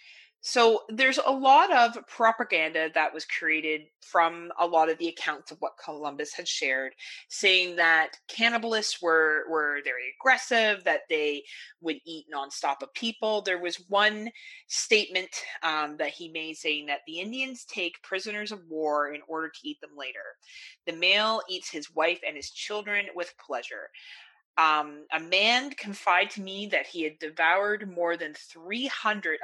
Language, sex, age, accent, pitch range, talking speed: English, female, 30-49, American, 160-230 Hz, 160 wpm